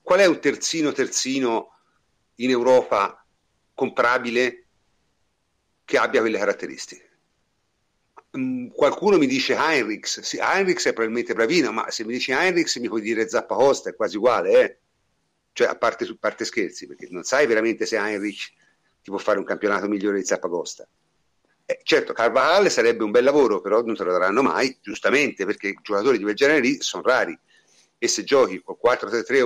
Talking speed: 165 wpm